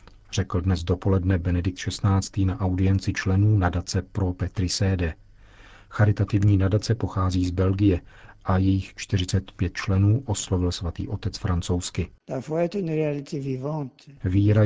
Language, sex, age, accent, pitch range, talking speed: Czech, male, 40-59, native, 95-110 Hz, 105 wpm